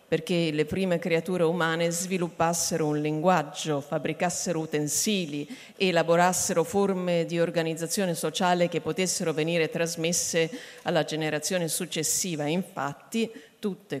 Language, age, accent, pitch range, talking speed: Italian, 50-69, native, 160-200 Hz, 105 wpm